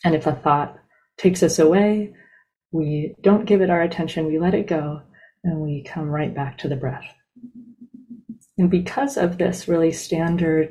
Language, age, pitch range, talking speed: English, 30-49, 150-200 Hz, 175 wpm